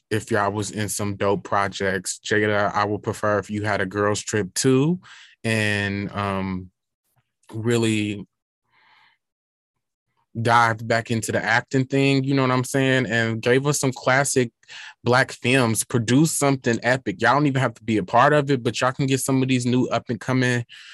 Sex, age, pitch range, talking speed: male, 20-39, 110-130 Hz, 180 wpm